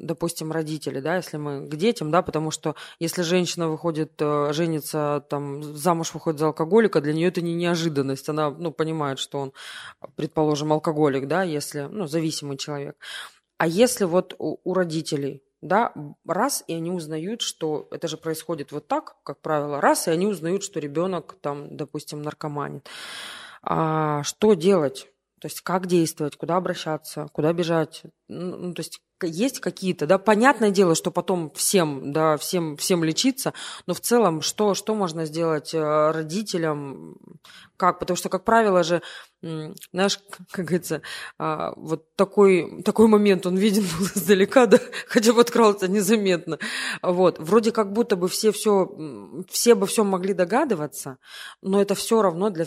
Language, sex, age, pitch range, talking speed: Russian, female, 20-39, 155-195 Hz, 155 wpm